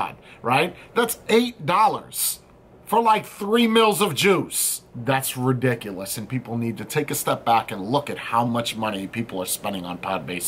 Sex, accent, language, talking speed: male, American, English, 180 wpm